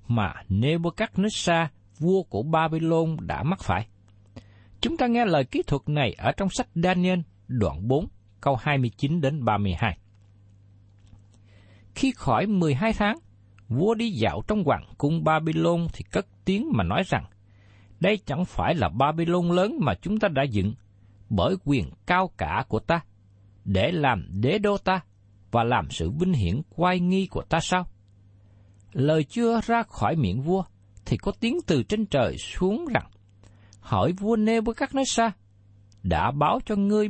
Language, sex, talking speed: Vietnamese, male, 155 wpm